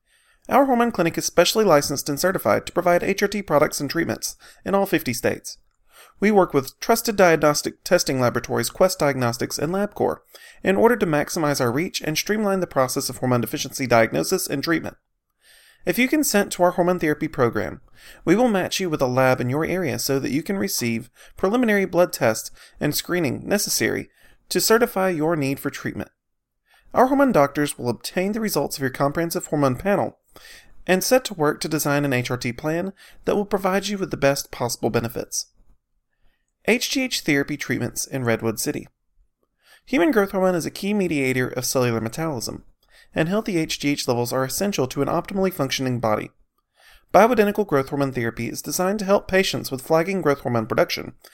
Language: English